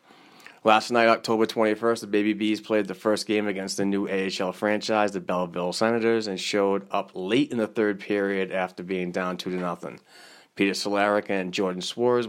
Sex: male